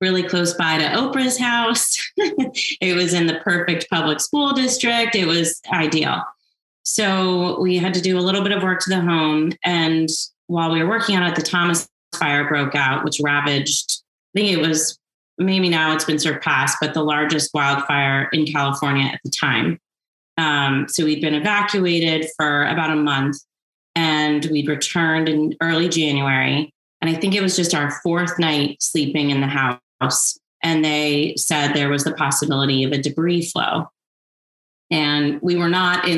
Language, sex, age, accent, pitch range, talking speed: English, female, 30-49, American, 145-180 Hz, 175 wpm